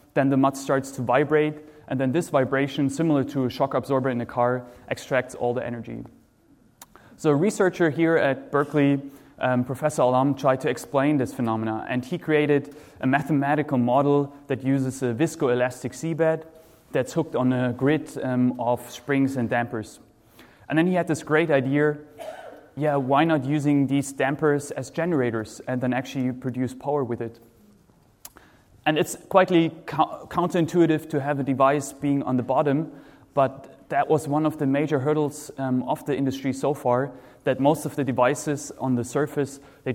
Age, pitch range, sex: 20-39, 125-150 Hz, male